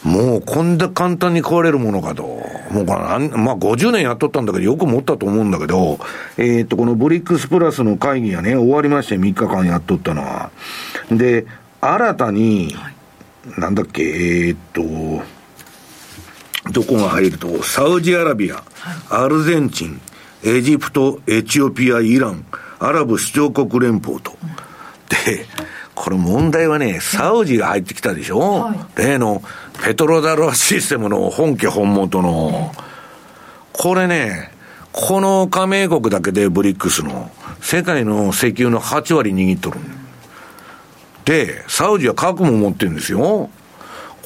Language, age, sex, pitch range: Japanese, 50-69, male, 105-175 Hz